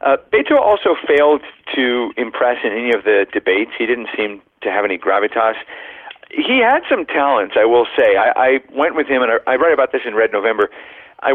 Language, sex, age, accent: English, male, 40-59, American